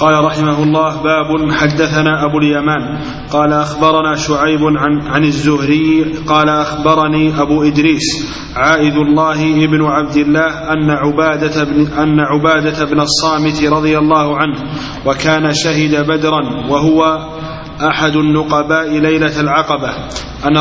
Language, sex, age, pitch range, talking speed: Arabic, male, 30-49, 150-155 Hz, 115 wpm